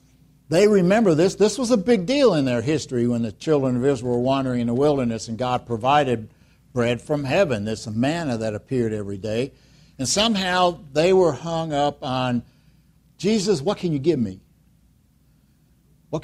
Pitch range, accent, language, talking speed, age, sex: 125-155 Hz, American, English, 175 wpm, 60-79, male